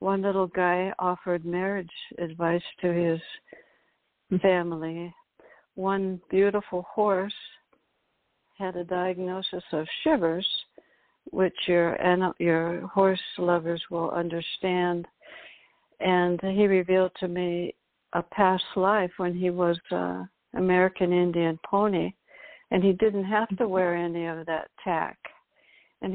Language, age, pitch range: English, 60-79, 170-195 Hz